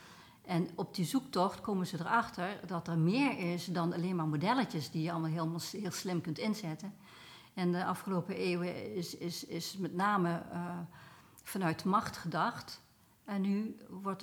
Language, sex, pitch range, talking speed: Dutch, female, 165-200 Hz, 165 wpm